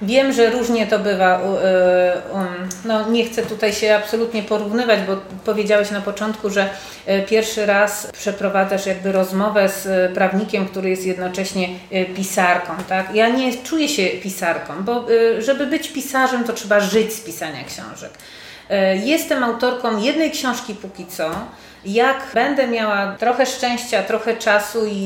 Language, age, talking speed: Polish, 30-49, 130 wpm